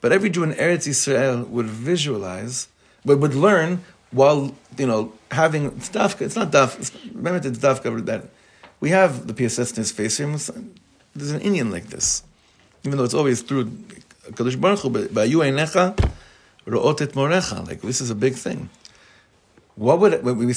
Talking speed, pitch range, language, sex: 160 wpm, 110-140 Hz, English, male